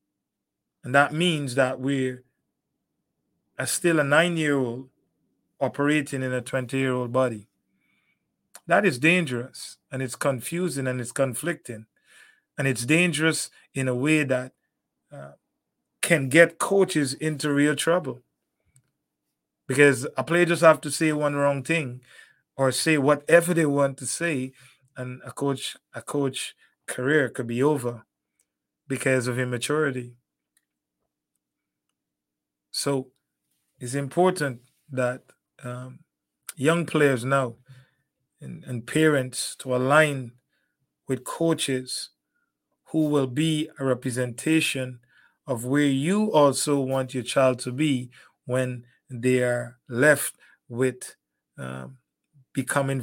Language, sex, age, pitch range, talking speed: English, male, 20-39, 125-145 Hz, 115 wpm